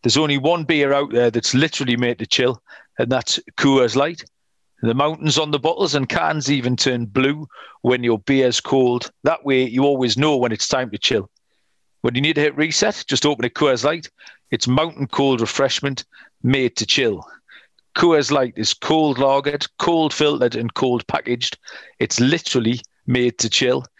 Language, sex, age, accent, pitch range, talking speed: English, male, 40-59, British, 125-150 Hz, 180 wpm